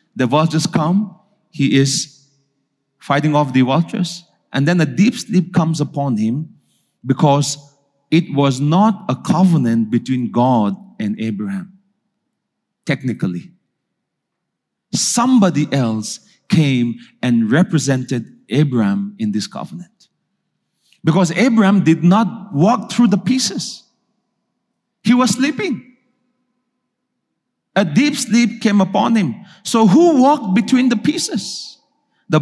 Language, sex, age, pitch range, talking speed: English, male, 40-59, 140-225 Hz, 115 wpm